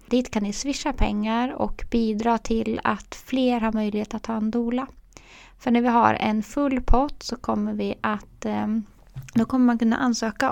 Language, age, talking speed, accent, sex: Swedish, 20-39, 185 wpm, native, female